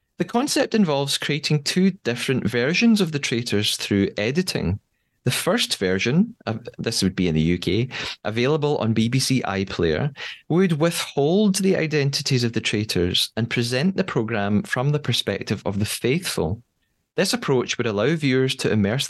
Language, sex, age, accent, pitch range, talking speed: English, male, 30-49, British, 100-145 Hz, 155 wpm